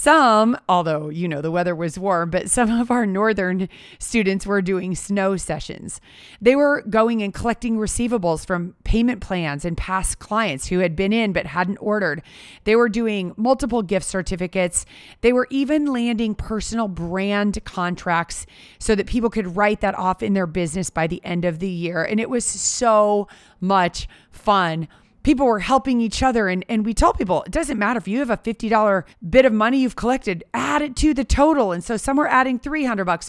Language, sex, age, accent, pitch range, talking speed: English, female, 30-49, American, 180-240 Hz, 195 wpm